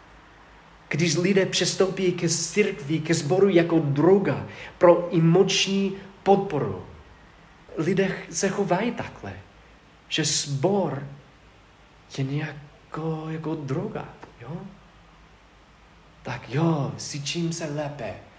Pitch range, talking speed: 130-165 Hz, 90 wpm